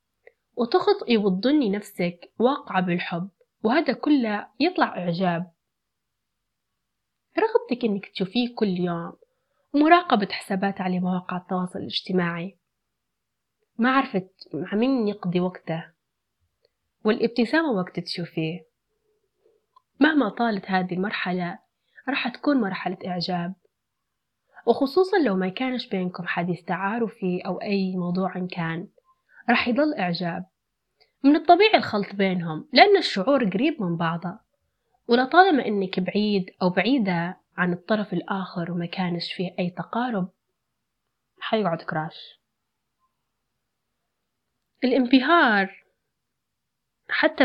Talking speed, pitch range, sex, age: 100 wpm, 180-260 Hz, female, 20-39